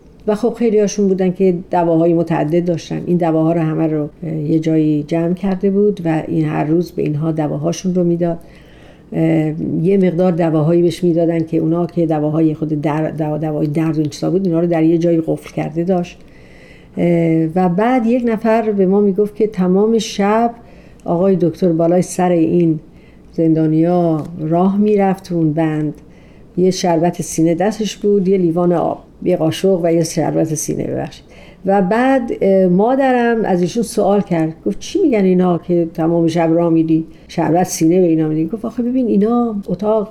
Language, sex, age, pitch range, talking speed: Persian, female, 50-69, 165-205 Hz, 165 wpm